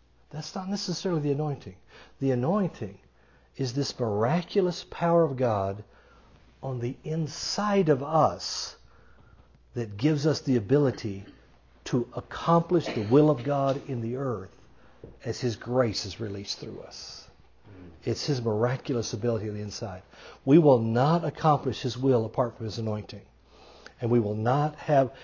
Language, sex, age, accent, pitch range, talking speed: English, male, 60-79, American, 105-150 Hz, 145 wpm